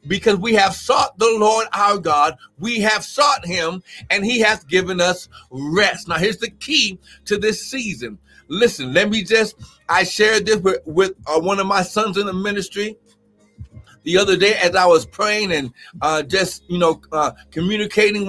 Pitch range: 185-225 Hz